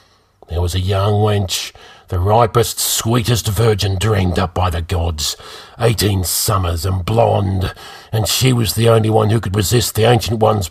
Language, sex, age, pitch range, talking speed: English, male, 50-69, 95-110 Hz, 170 wpm